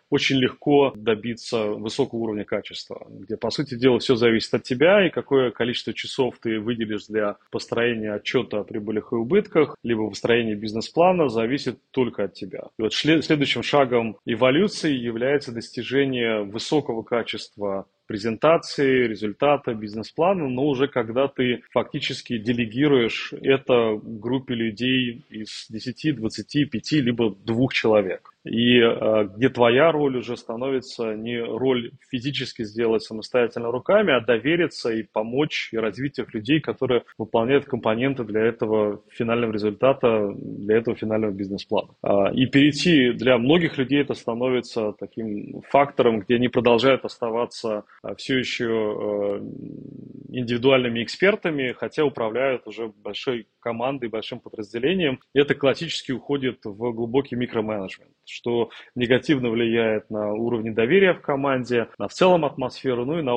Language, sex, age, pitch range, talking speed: Russian, male, 30-49, 110-135 Hz, 130 wpm